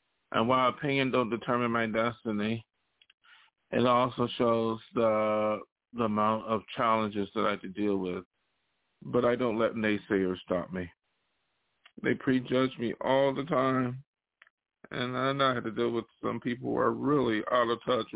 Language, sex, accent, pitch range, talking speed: English, male, American, 105-125 Hz, 160 wpm